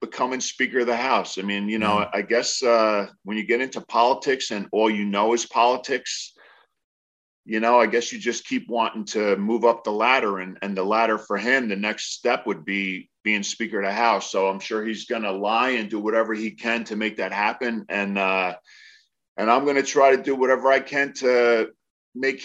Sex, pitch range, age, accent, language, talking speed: male, 105-130 Hz, 40-59, American, English, 220 wpm